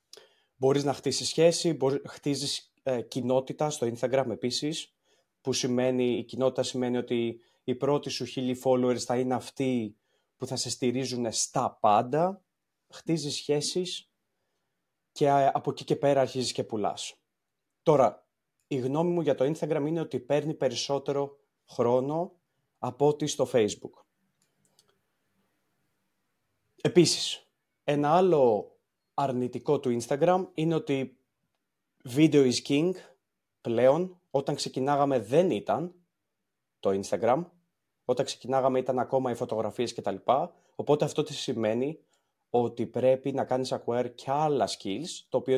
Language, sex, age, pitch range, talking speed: Greek, male, 30-49, 125-150 Hz, 125 wpm